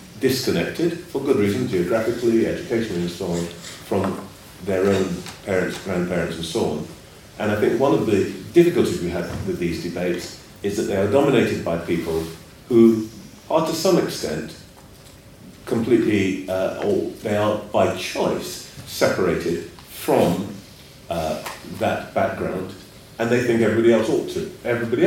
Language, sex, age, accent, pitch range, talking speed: English, male, 40-59, British, 90-120 Hz, 145 wpm